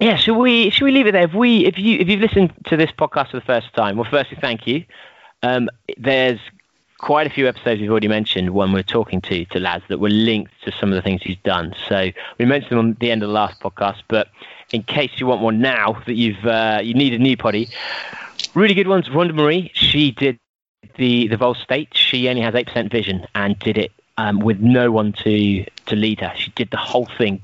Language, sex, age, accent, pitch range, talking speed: English, male, 20-39, British, 105-130 Hz, 240 wpm